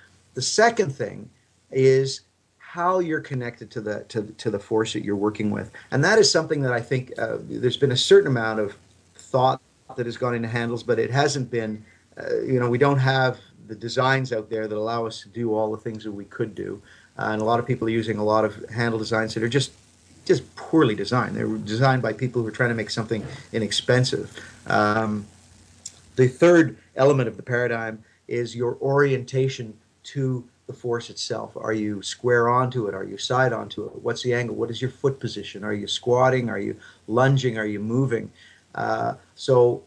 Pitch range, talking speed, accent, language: 110-130 Hz, 205 wpm, American, English